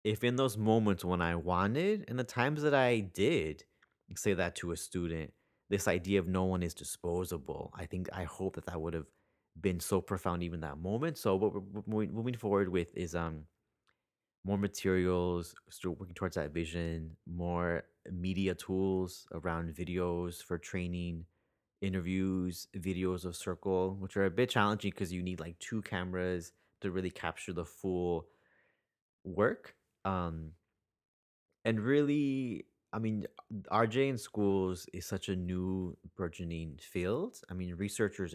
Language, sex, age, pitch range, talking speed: English, male, 30-49, 85-100 Hz, 155 wpm